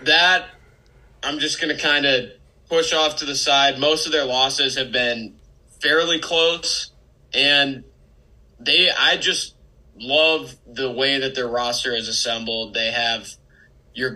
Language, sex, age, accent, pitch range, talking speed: English, male, 20-39, American, 120-140 Hz, 150 wpm